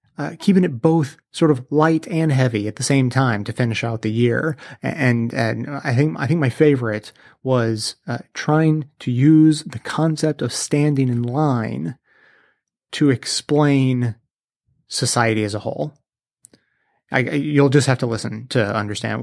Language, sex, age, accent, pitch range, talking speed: English, male, 30-49, American, 120-145 Hz, 160 wpm